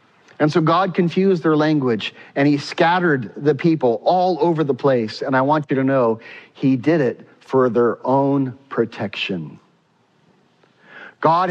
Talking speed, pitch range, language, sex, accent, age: 150 wpm, 155-205 Hz, English, male, American, 40-59